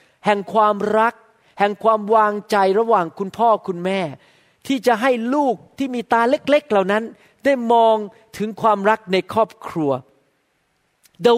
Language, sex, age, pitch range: Thai, male, 40-59, 185-235 Hz